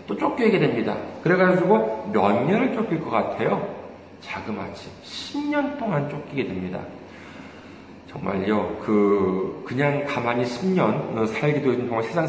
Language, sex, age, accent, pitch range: Korean, male, 40-59, native, 115-175 Hz